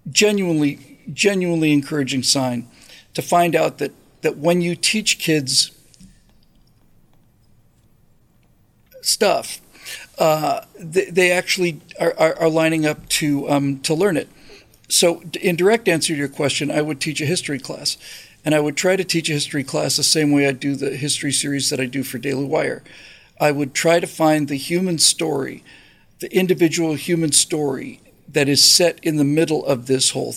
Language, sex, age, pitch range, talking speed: English, male, 50-69, 140-165 Hz, 170 wpm